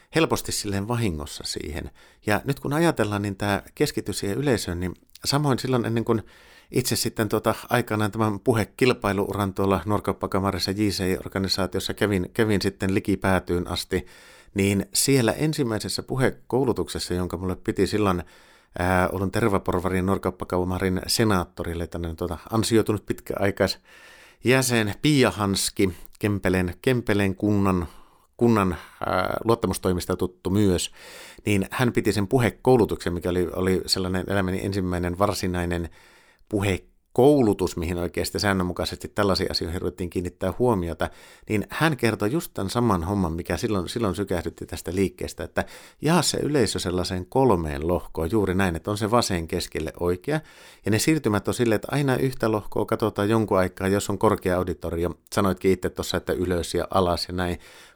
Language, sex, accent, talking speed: Finnish, male, native, 135 wpm